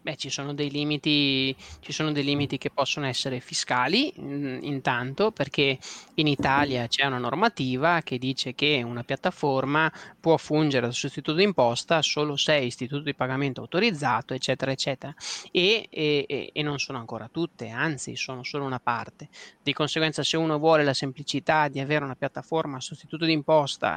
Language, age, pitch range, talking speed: Italian, 20-39, 135-160 Hz, 155 wpm